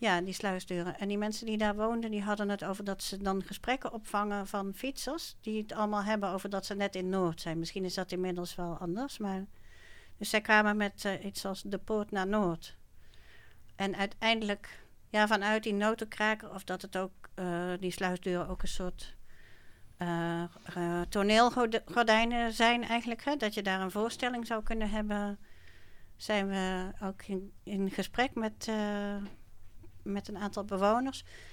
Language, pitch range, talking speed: Dutch, 185-215 Hz, 175 wpm